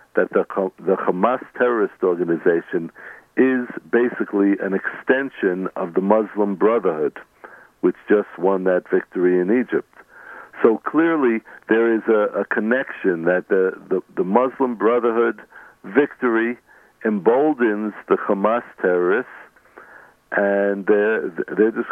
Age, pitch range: 60-79, 95-120 Hz